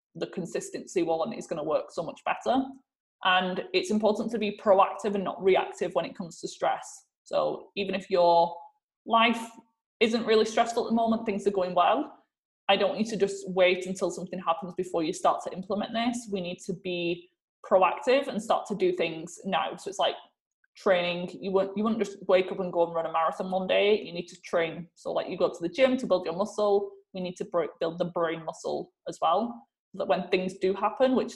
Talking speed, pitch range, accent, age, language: 220 wpm, 180-225 Hz, British, 20-39, English